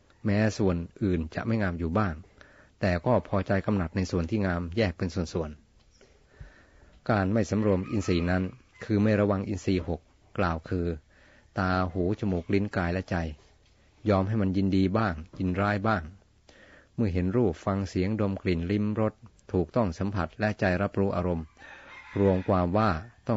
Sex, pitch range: male, 90-105 Hz